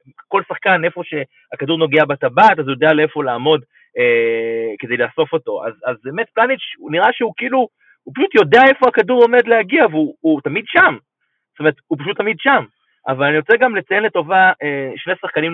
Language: Hebrew